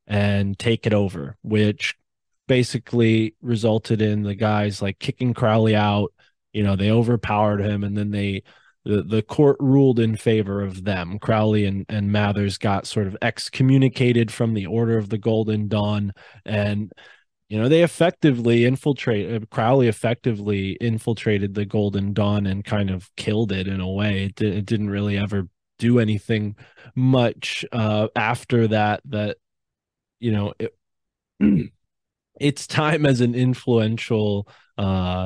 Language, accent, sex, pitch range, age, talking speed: English, American, male, 100-120 Hz, 20-39, 145 wpm